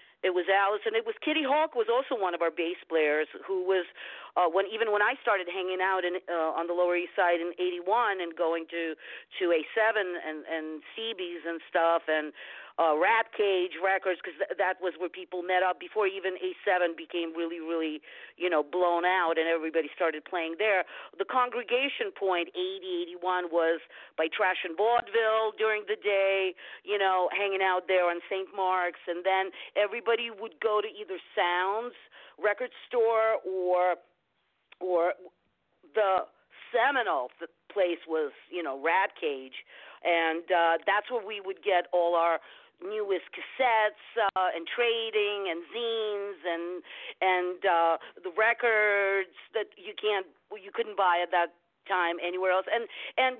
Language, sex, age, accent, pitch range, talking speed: English, female, 50-69, American, 175-245 Hz, 165 wpm